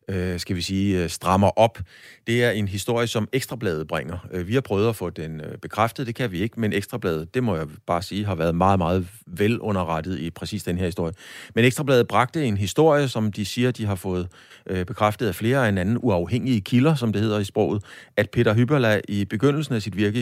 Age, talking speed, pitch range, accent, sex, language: 30-49, 215 wpm, 90-115 Hz, native, male, Danish